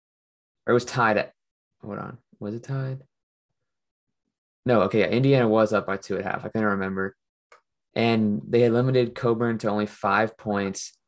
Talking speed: 175 wpm